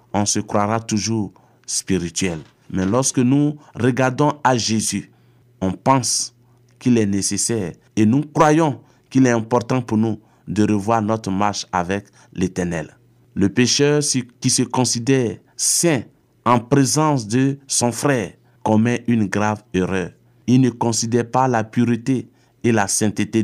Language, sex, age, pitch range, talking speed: French, male, 50-69, 105-130 Hz, 140 wpm